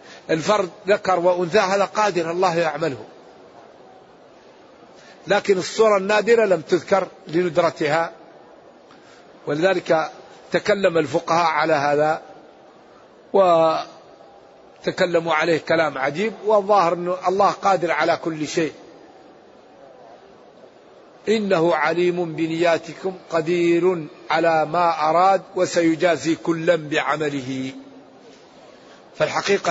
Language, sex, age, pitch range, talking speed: Arabic, male, 50-69, 160-180 Hz, 80 wpm